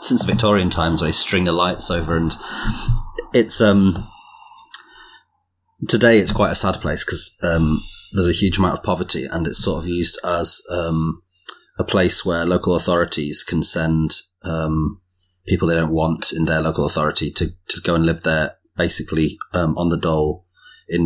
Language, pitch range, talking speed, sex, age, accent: English, 80-90 Hz, 175 wpm, male, 30-49, British